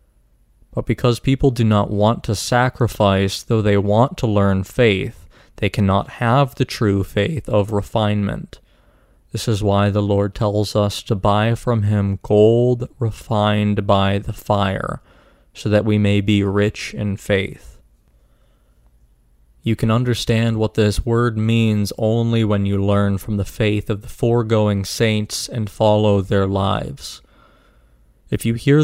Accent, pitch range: American, 100-115 Hz